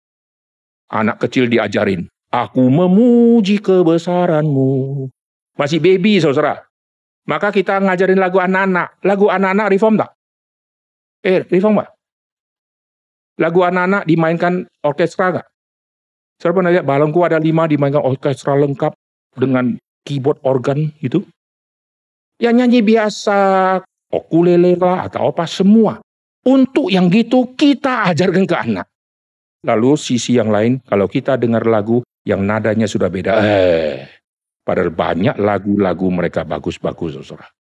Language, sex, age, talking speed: Indonesian, male, 50-69, 115 wpm